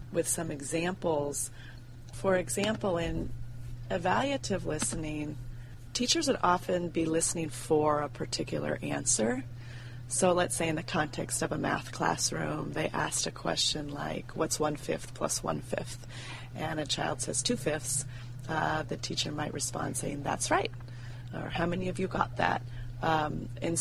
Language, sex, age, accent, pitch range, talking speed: English, female, 30-49, American, 120-175 Hz, 145 wpm